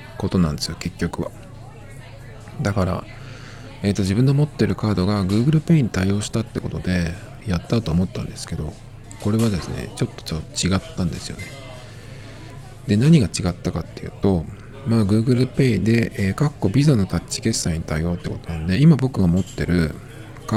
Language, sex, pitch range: Japanese, male, 95-125 Hz